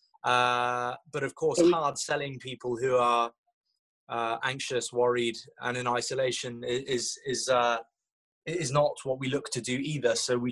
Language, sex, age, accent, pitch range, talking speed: English, male, 20-39, British, 115-130 Hz, 160 wpm